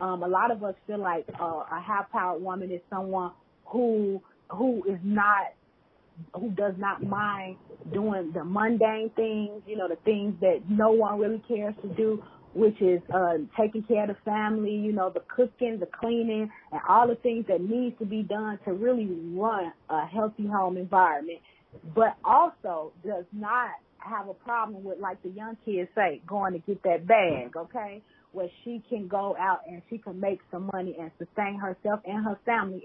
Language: English